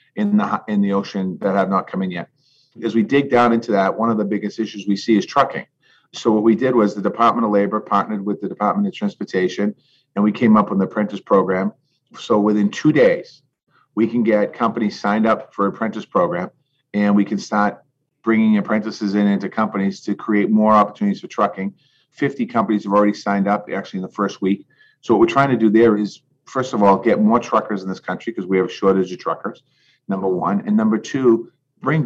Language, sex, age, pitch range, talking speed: English, male, 40-59, 100-120 Hz, 225 wpm